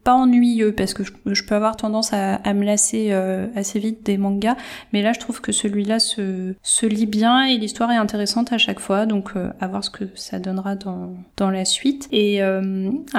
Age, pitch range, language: 20-39, 190-225 Hz, French